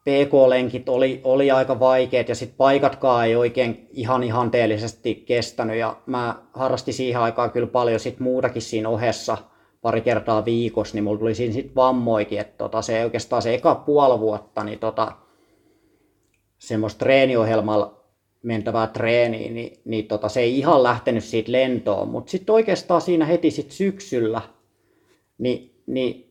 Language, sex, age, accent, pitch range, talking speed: Finnish, male, 30-49, native, 110-135 Hz, 150 wpm